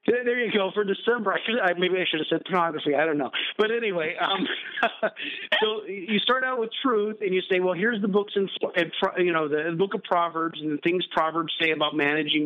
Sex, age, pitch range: male, 50-69, 140-180 Hz